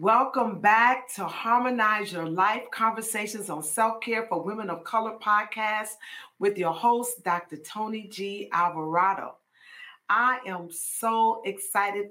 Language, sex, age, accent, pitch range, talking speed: English, female, 40-59, American, 185-240 Hz, 125 wpm